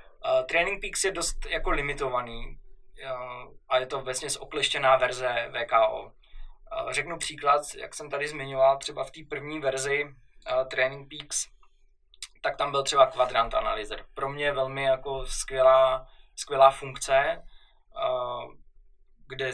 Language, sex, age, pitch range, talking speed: Czech, male, 20-39, 130-200 Hz, 125 wpm